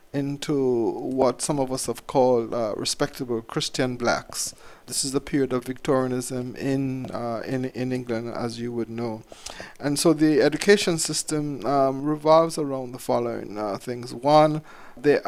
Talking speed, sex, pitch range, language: 155 wpm, male, 130-155 Hz, English